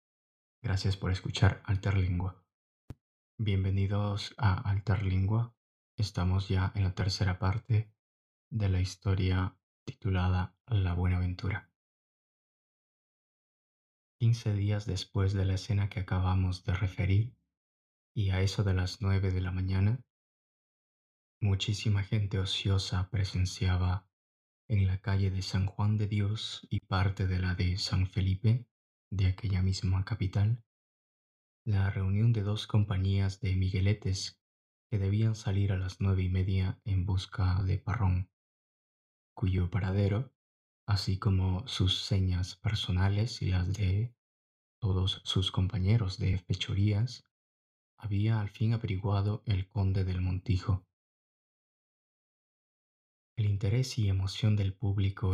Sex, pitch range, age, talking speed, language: male, 95-105 Hz, 30-49, 120 wpm, Spanish